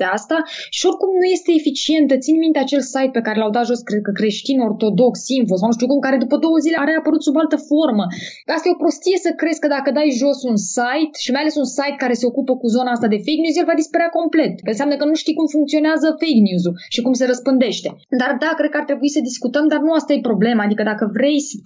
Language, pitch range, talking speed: Romanian, 210-280 Hz, 260 wpm